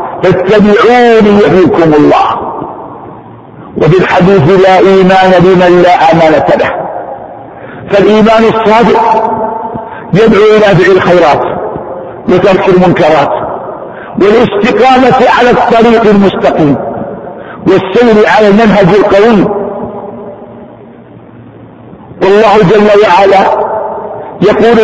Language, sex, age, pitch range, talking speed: Arabic, male, 50-69, 190-225 Hz, 70 wpm